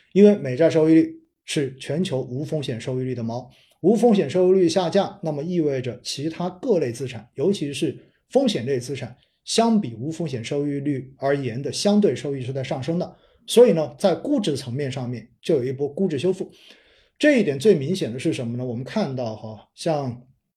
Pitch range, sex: 125-190 Hz, male